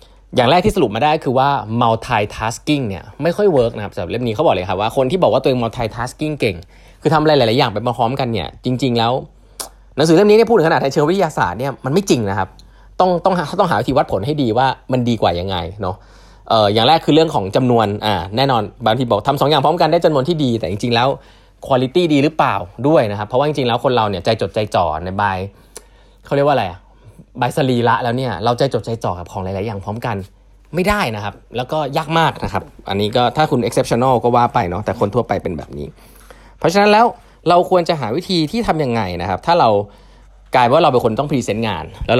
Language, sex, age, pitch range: Thai, male, 20-39, 100-150 Hz